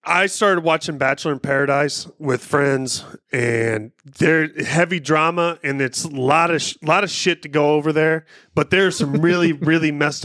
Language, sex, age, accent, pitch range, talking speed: English, male, 30-49, American, 130-160 Hz, 185 wpm